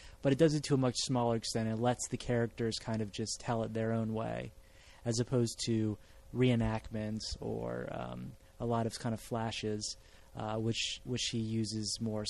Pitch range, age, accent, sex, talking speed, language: 110-125 Hz, 20-39, American, male, 190 wpm, English